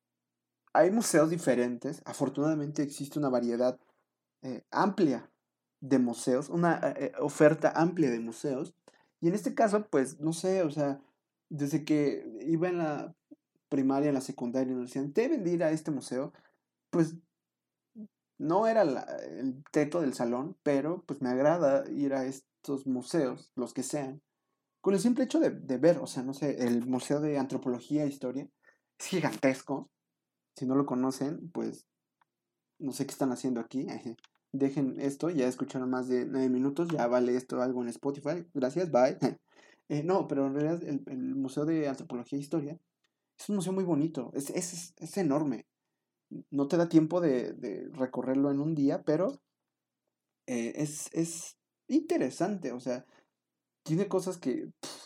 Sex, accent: male, Mexican